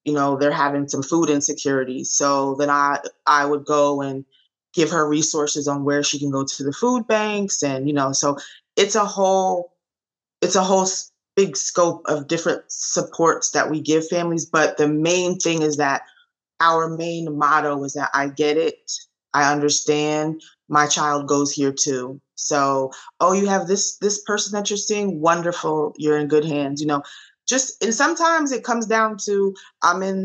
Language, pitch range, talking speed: English, 145-180 Hz, 185 wpm